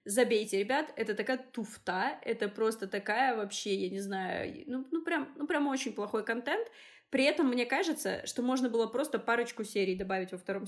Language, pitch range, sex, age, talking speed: Russian, 205-280 Hz, female, 20-39, 180 wpm